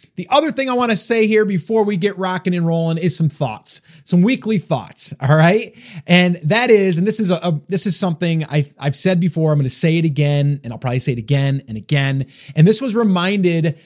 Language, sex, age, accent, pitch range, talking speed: English, male, 30-49, American, 145-180 Hz, 235 wpm